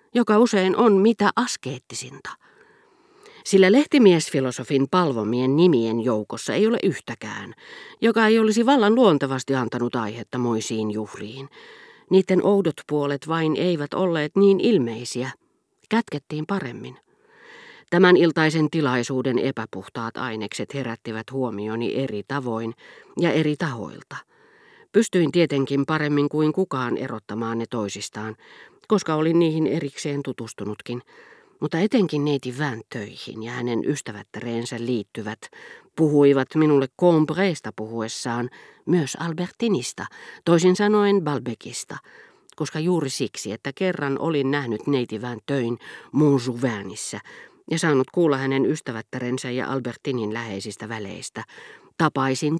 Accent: native